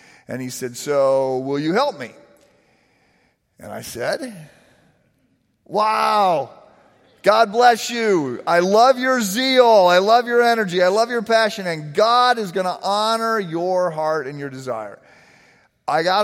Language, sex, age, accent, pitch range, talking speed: English, male, 40-59, American, 145-215 Hz, 150 wpm